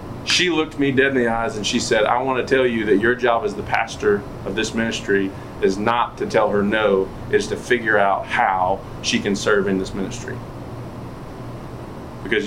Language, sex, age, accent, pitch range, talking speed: English, male, 30-49, American, 110-130 Hz, 200 wpm